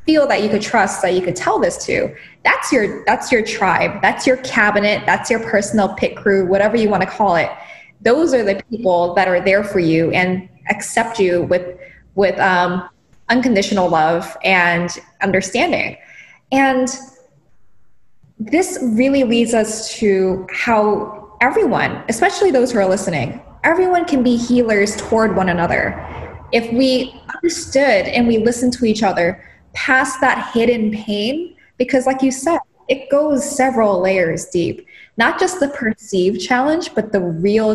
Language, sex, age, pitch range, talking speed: English, female, 10-29, 185-255 Hz, 155 wpm